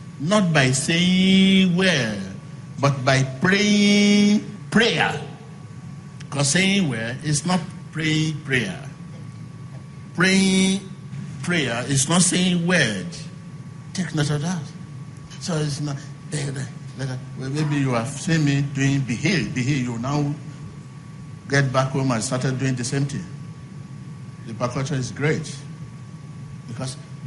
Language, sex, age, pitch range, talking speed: English, male, 60-79, 140-170 Hz, 120 wpm